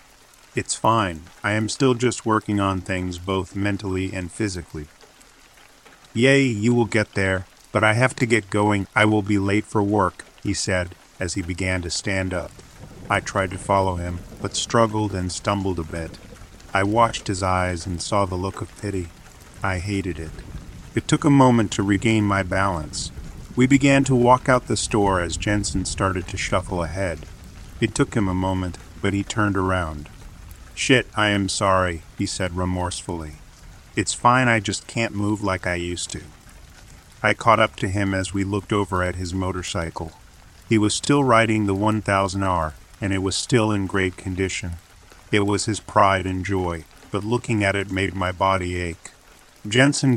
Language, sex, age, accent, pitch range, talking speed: English, male, 40-59, American, 90-110 Hz, 180 wpm